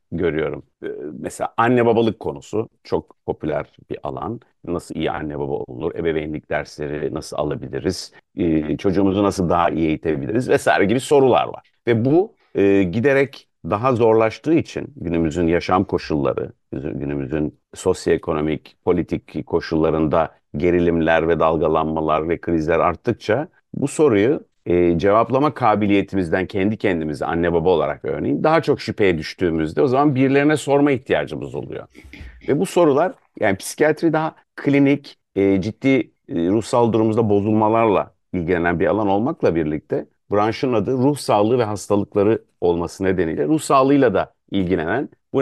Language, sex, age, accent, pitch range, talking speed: Turkish, male, 50-69, native, 85-115 Hz, 130 wpm